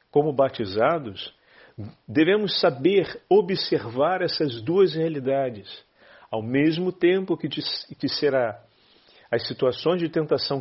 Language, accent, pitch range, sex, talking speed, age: Portuguese, Brazilian, 125-170 Hz, male, 105 wpm, 40-59